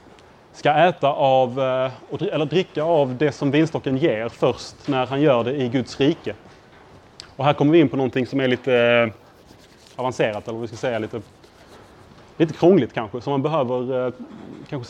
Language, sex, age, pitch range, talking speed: Swedish, male, 30-49, 120-145 Hz, 165 wpm